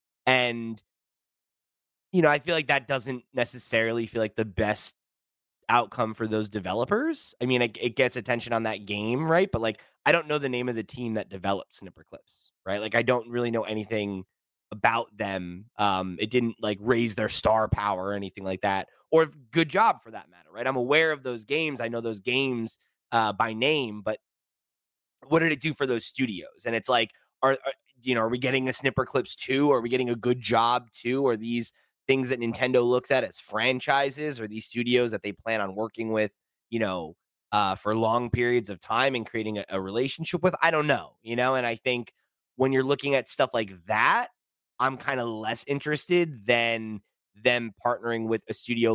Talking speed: 205 wpm